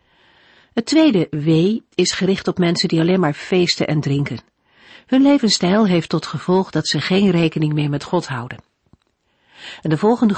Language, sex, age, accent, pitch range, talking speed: Dutch, female, 50-69, Dutch, 155-205 Hz, 170 wpm